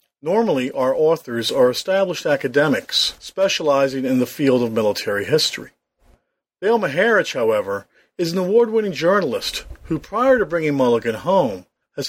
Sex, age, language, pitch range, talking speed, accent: male, 40-59, English, 125-190 Hz, 135 wpm, American